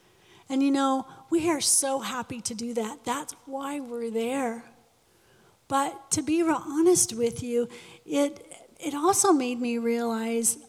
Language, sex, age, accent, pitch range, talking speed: English, female, 40-59, American, 225-265 Hz, 150 wpm